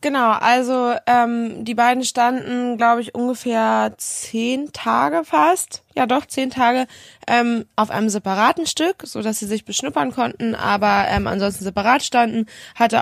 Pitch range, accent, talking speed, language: 200-240 Hz, German, 145 wpm, German